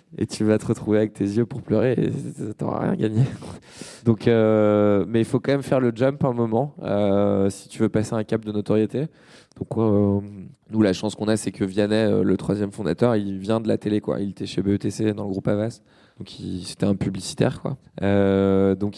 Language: French